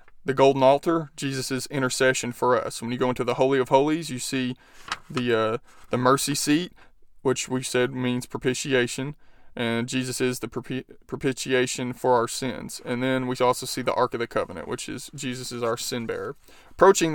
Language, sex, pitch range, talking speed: English, male, 125-135 Hz, 190 wpm